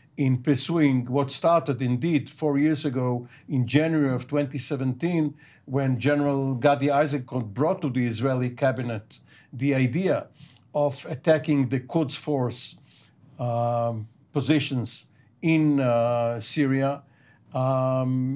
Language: English